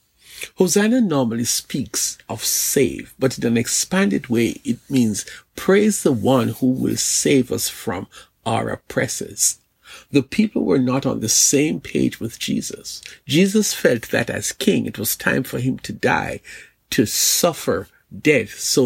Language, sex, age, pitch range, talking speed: English, male, 50-69, 120-200 Hz, 155 wpm